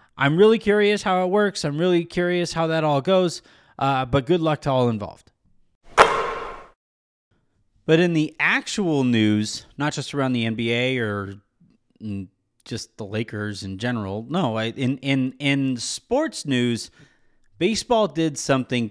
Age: 30-49